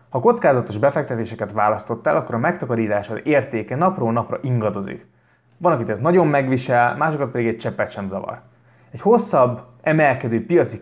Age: 20-39